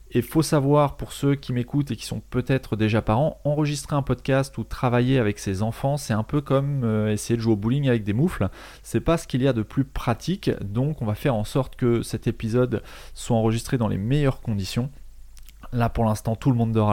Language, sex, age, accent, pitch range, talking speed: French, male, 20-39, French, 110-145 Hz, 225 wpm